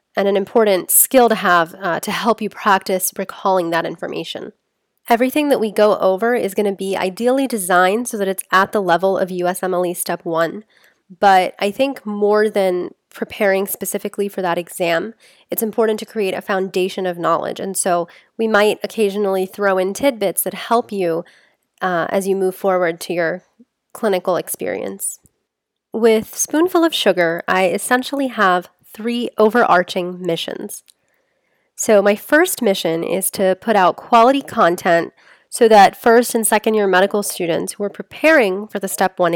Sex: female